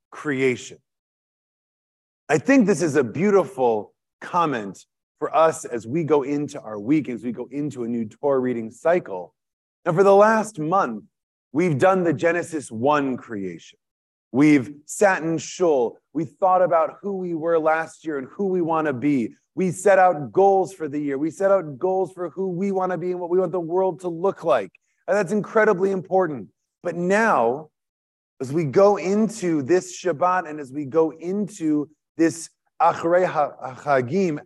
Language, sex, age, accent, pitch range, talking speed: English, male, 30-49, American, 130-180 Hz, 175 wpm